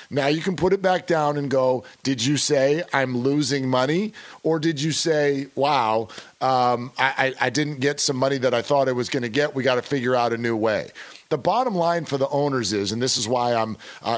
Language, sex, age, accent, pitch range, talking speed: English, male, 40-59, American, 120-160 Hz, 240 wpm